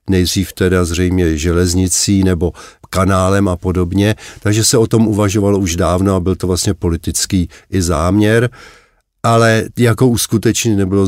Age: 50-69